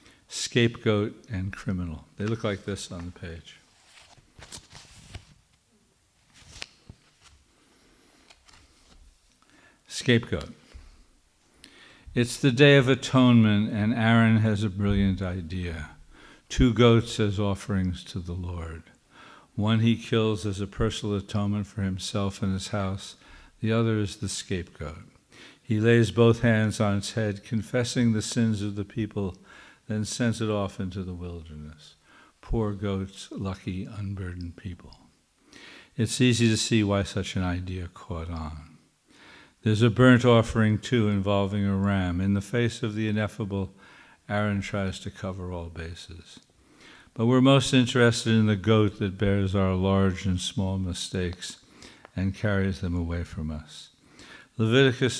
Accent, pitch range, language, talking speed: American, 90-110 Hz, English, 135 wpm